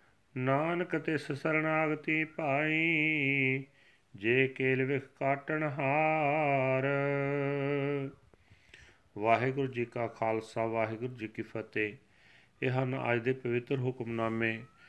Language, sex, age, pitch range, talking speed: Punjabi, male, 40-59, 110-140 Hz, 85 wpm